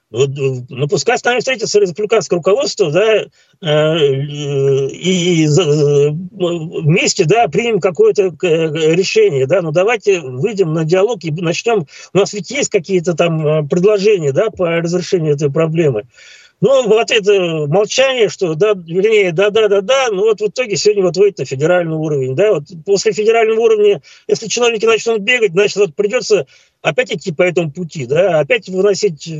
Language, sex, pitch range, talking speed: Russian, male, 150-205 Hz, 145 wpm